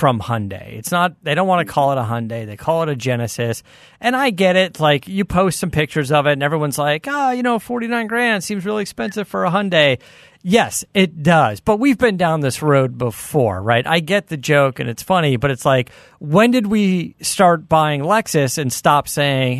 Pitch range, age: 120-170 Hz, 40-59